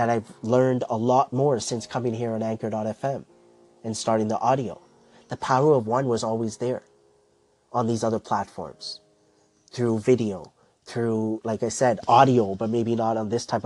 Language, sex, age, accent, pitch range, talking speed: English, male, 30-49, American, 110-130 Hz, 170 wpm